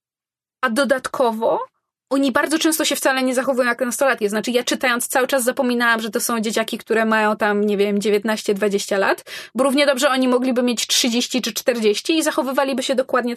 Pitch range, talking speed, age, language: 215-275 Hz, 185 wpm, 20-39, Polish